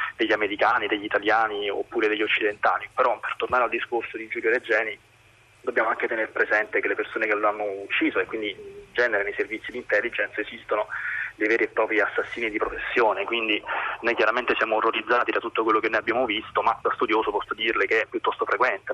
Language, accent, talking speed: Italian, native, 200 wpm